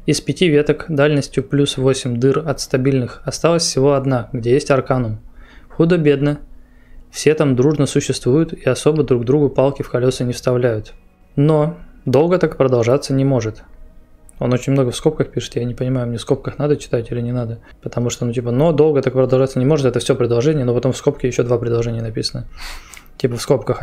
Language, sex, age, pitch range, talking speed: Russian, male, 20-39, 125-145 Hz, 190 wpm